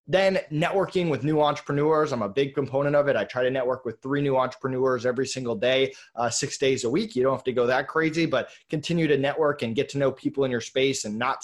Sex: male